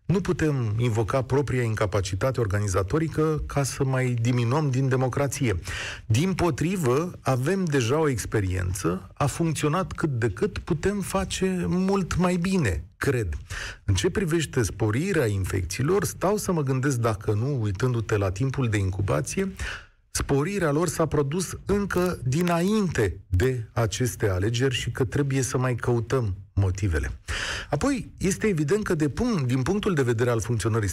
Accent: native